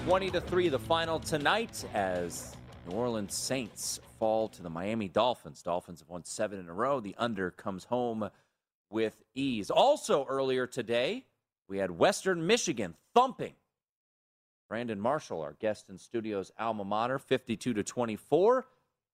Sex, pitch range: male, 110-165 Hz